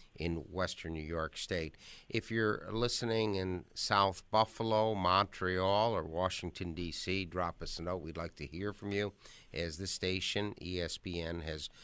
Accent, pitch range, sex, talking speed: American, 85-100 Hz, male, 150 wpm